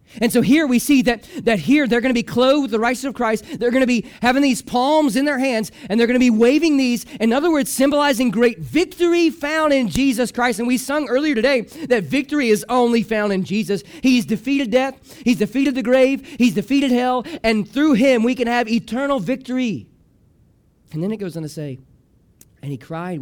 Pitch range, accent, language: 170-245 Hz, American, English